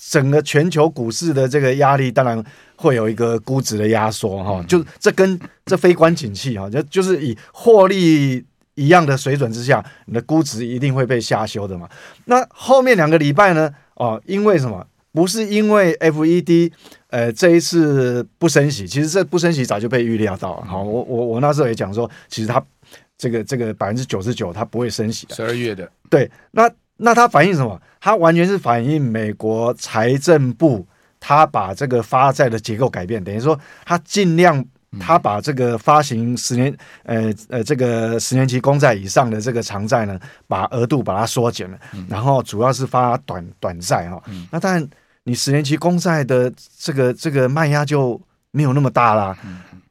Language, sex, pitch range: Chinese, male, 115-160 Hz